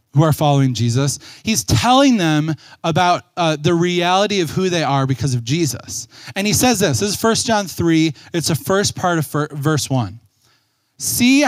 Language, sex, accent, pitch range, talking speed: English, male, American, 135-200 Hz, 185 wpm